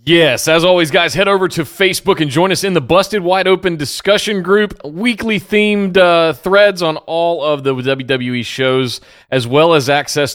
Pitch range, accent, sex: 140-185 Hz, American, male